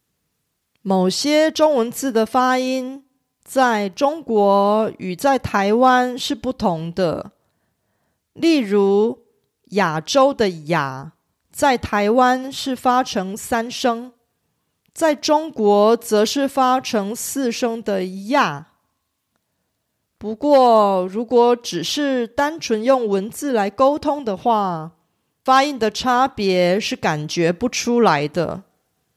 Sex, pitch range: female, 195-260 Hz